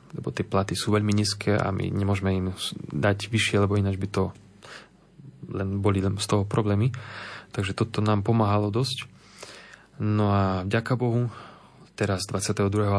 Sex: male